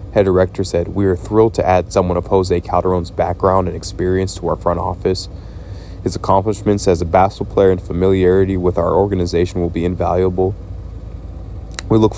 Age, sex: 20-39, male